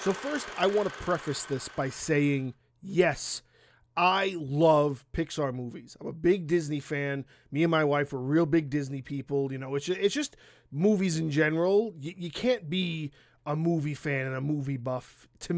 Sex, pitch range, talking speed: male, 140-190 Hz, 185 wpm